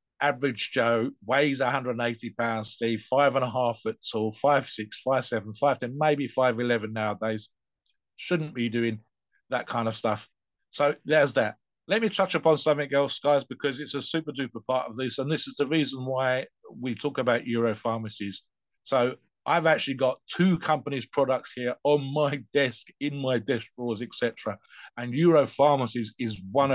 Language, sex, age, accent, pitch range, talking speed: English, male, 50-69, British, 115-140 Hz, 175 wpm